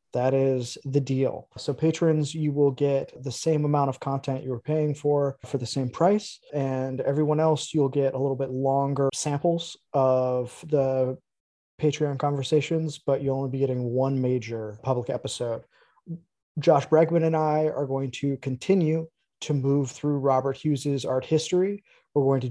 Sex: male